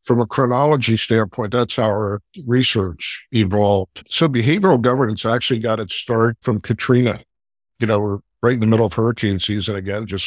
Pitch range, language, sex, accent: 100-120 Hz, English, male, American